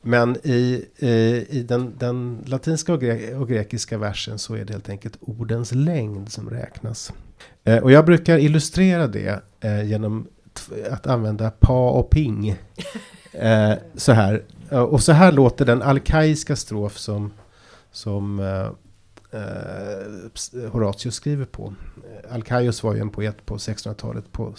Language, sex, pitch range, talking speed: Swedish, male, 100-120 Hz, 135 wpm